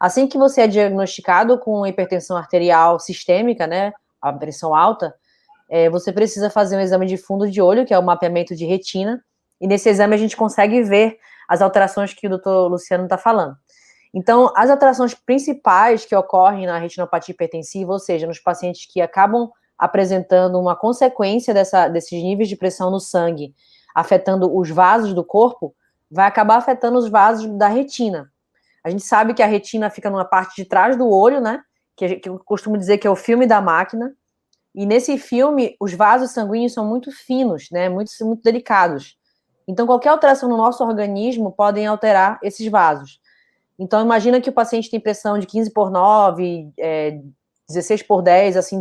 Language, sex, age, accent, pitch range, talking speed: Portuguese, female, 20-39, Brazilian, 180-230 Hz, 175 wpm